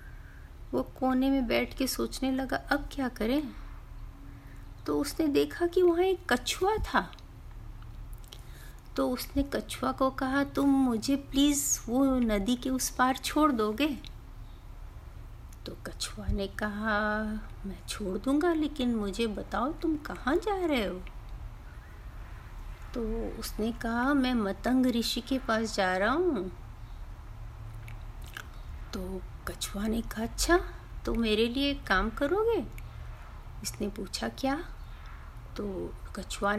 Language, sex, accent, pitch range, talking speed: Hindi, female, native, 190-285 Hz, 120 wpm